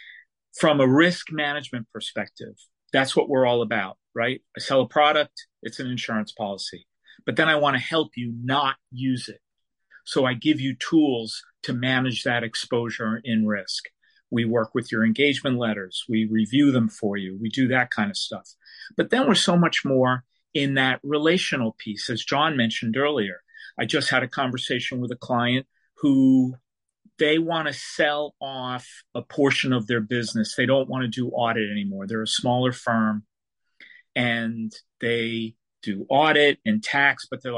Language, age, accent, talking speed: English, 50-69, American, 175 wpm